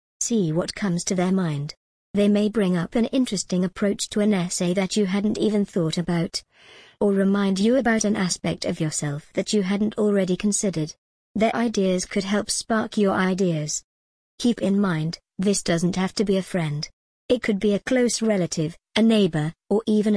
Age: 40-59